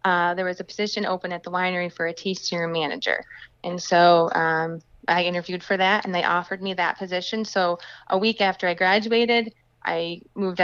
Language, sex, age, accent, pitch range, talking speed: English, female, 20-39, American, 170-195 Hz, 195 wpm